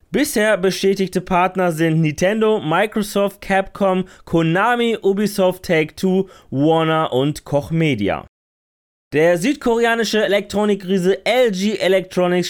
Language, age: German, 20-39